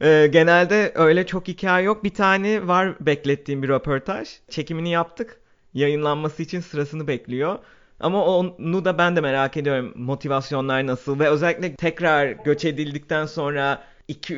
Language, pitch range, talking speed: Turkish, 140-170 Hz, 140 wpm